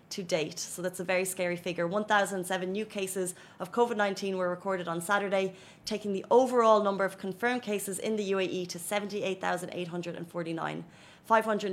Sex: female